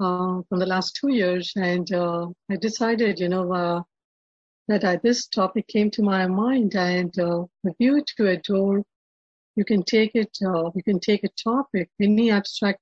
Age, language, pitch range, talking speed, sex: 60-79, English, 180-210 Hz, 185 wpm, female